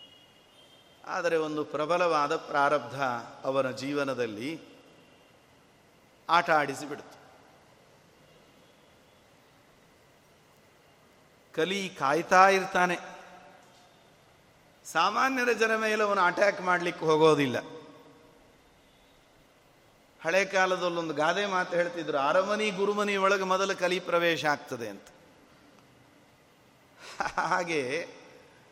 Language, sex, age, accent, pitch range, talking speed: Kannada, male, 50-69, native, 155-200 Hz, 65 wpm